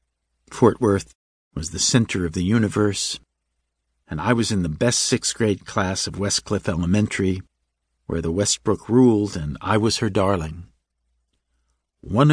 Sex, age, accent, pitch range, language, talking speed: male, 50-69, American, 80-110 Hz, English, 145 wpm